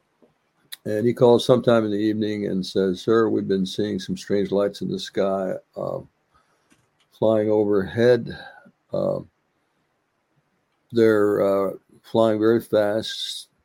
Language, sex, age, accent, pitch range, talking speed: English, male, 60-79, American, 95-115 Hz, 125 wpm